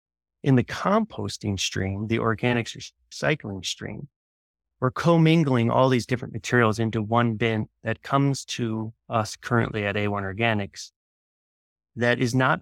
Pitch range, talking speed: 105-135 Hz, 140 wpm